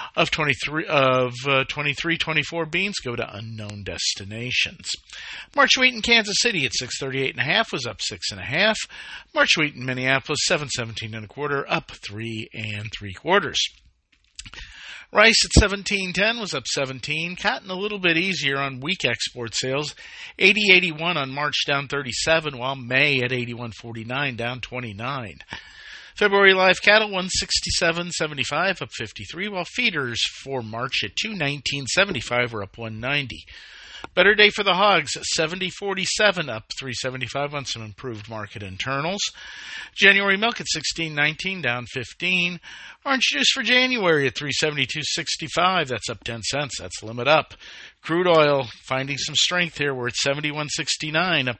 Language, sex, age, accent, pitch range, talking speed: English, male, 50-69, American, 120-180 Hz, 160 wpm